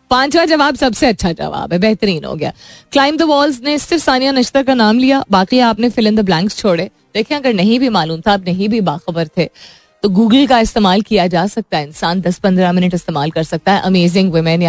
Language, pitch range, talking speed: Hindi, 170-225 Hz, 170 wpm